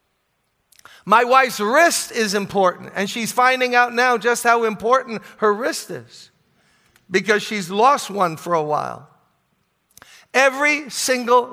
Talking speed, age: 130 wpm, 50-69